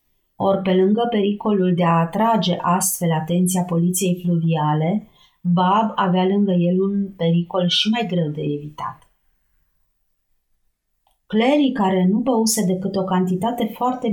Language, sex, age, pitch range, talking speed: Romanian, female, 30-49, 170-210 Hz, 125 wpm